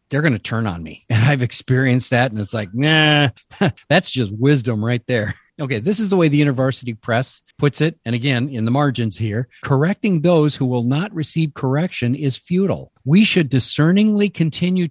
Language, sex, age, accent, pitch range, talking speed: English, male, 50-69, American, 130-180 Hz, 195 wpm